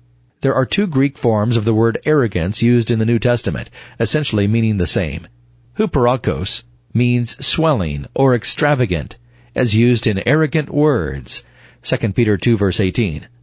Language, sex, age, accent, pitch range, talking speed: English, male, 40-59, American, 100-125 Hz, 145 wpm